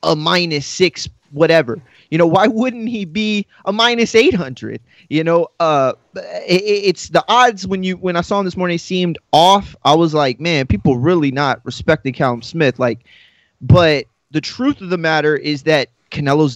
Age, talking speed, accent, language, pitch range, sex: 20-39, 180 wpm, American, English, 130-175 Hz, male